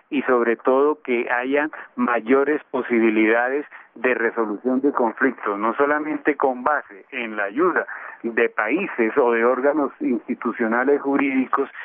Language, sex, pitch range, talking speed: Spanish, male, 120-165 Hz, 125 wpm